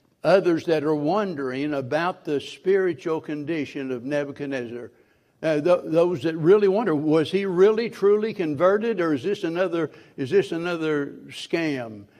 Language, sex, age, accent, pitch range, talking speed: English, male, 60-79, American, 145-175 Hz, 145 wpm